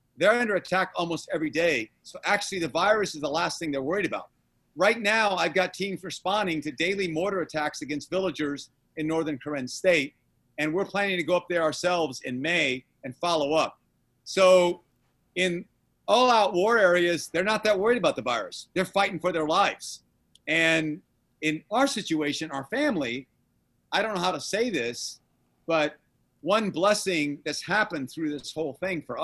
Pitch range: 155-190 Hz